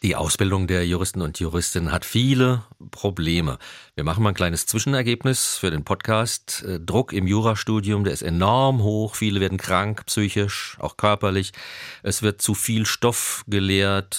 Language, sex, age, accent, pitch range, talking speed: German, male, 40-59, German, 90-110 Hz, 155 wpm